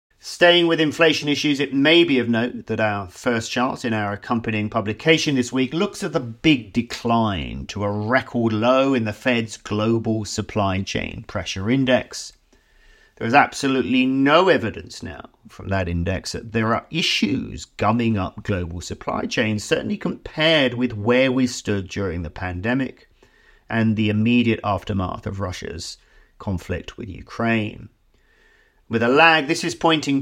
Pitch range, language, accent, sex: 105-135 Hz, English, British, male